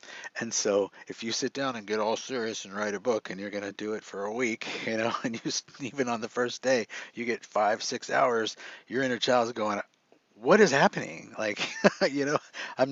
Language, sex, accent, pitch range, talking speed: English, male, American, 105-125 Hz, 230 wpm